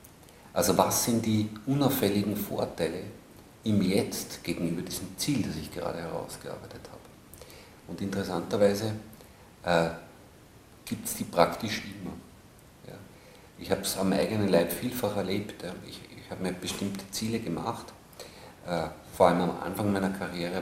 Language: German